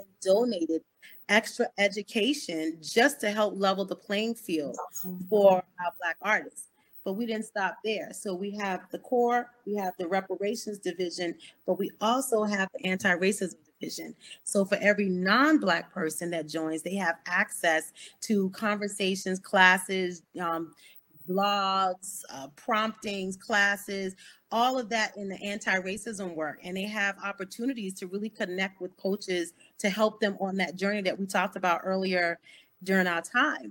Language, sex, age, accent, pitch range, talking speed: English, female, 30-49, American, 185-225 Hz, 150 wpm